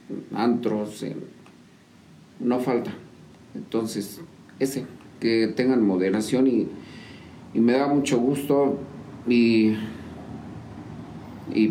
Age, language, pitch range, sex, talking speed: 50-69, Spanish, 105-125 Hz, male, 85 wpm